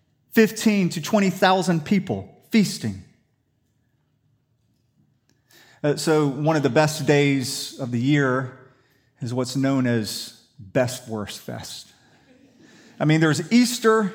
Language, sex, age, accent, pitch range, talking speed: English, male, 40-59, American, 135-205 Hz, 110 wpm